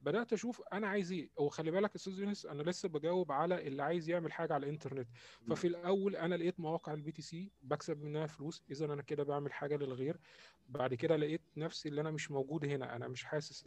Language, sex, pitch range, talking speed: Arabic, male, 135-165 Hz, 215 wpm